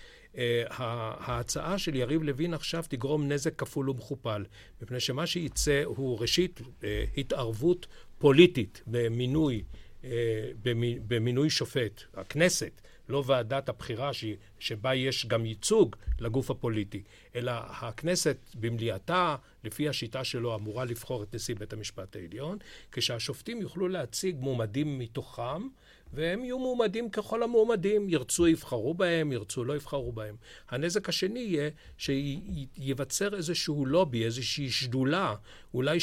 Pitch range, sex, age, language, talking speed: 120-160 Hz, male, 50-69, Hebrew, 120 wpm